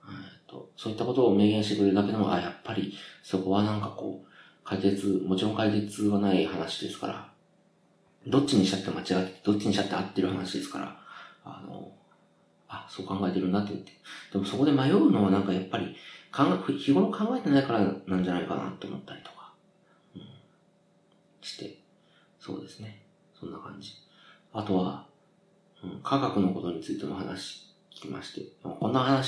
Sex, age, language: male, 40-59, Japanese